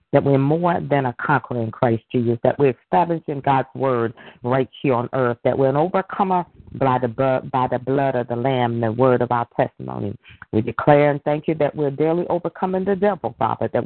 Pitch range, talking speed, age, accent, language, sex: 125-150 Hz, 215 wpm, 40-59, American, English, female